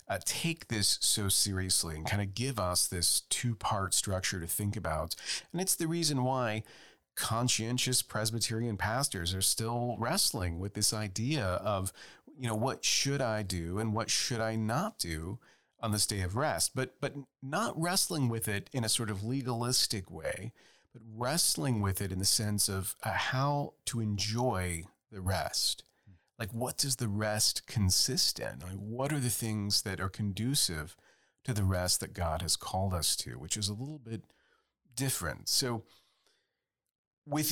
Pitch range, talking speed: 95-130 Hz, 170 wpm